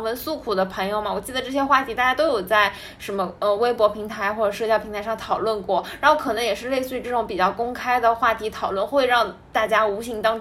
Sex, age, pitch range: female, 20-39, 200-240 Hz